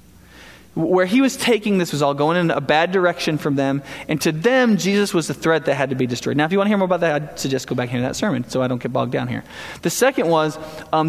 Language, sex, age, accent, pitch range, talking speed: English, male, 20-39, American, 155-210 Hz, 285 wpm